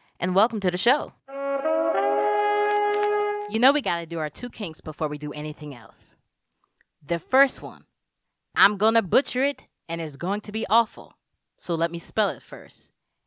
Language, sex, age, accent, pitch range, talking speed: English, female, 20-39, American, 155-220 Hz, 175 wpm